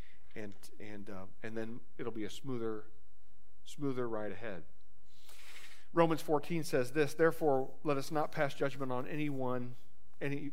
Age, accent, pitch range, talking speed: 40-59, American, 115-160 Hz, 140 wpm